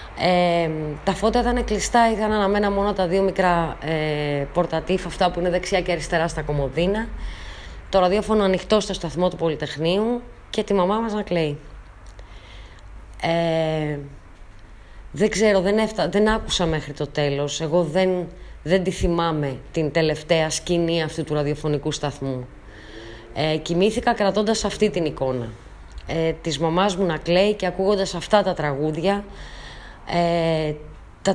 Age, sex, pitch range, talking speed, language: 20-39, female, 155-205 Hz, 140 wpm, Greek